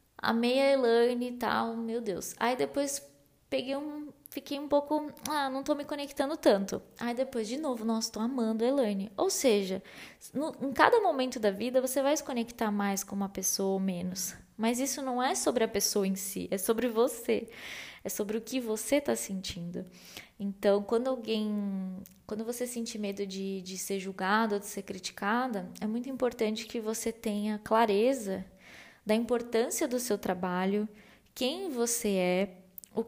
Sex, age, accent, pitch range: female, 20-39, Brazilian, 200-250 Hz